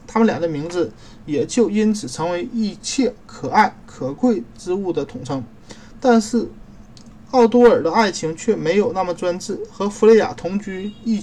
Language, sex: Chinese, male